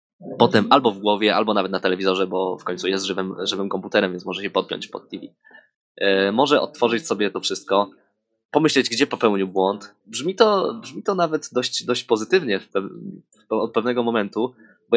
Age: 20-39